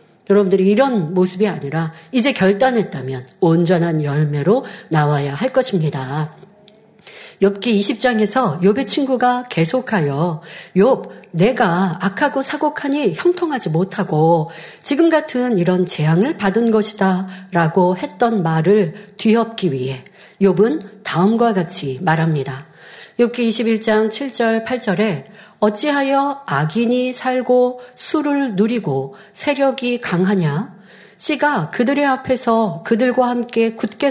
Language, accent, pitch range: Korean, native, 180-250 Hz